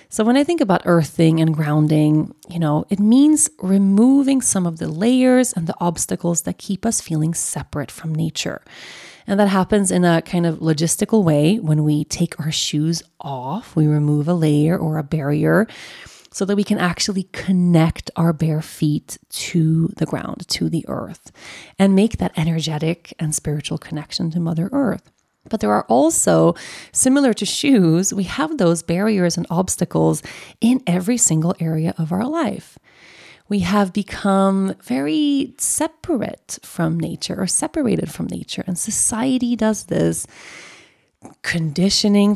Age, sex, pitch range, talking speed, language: 30-49, female, 160-215 Hz, 155 wpm, English